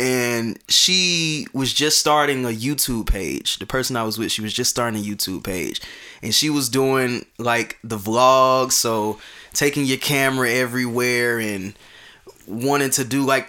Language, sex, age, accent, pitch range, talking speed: English, male, 20-39, American, 115-150 Hz, 165 wpm